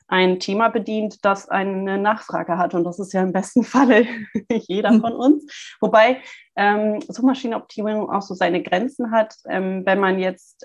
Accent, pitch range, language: German, 175-210 Hz, German